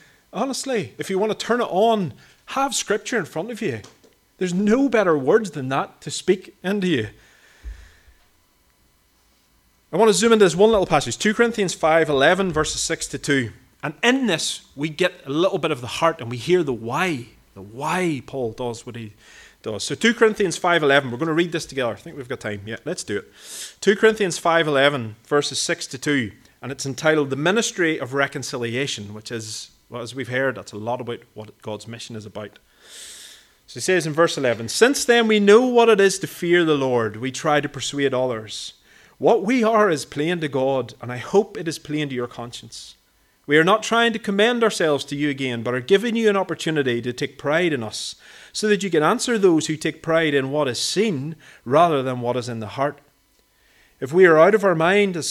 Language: English